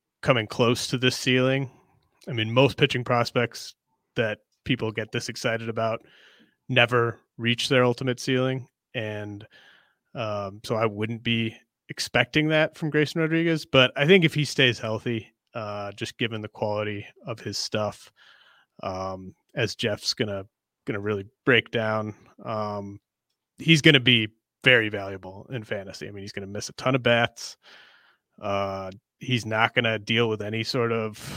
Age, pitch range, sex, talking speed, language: 30-49, 110-125 Hz, male, 160 wpm, English